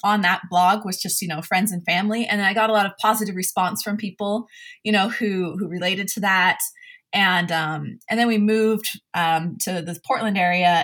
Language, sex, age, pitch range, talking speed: English, female, 20-39, 180-230 Hz, 210 wpm